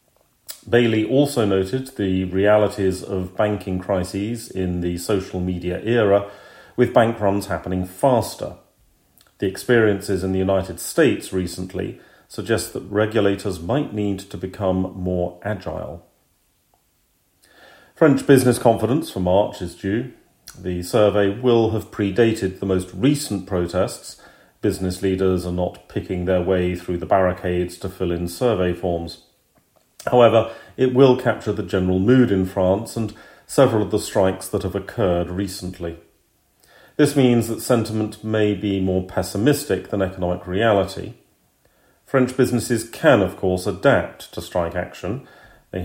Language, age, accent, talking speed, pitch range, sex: English, 40-59, British, 135 wpm, 90-110 Hz, male